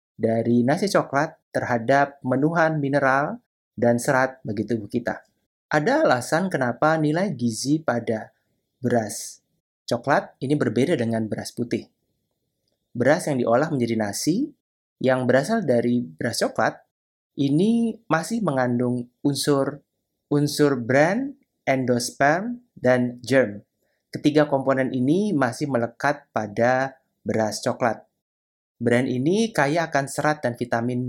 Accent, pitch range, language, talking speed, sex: native, 120-150 Hz, Indonesian, 110 wpm, male